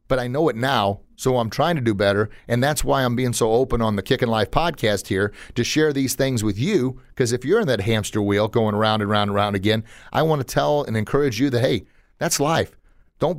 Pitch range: 110-145 Hz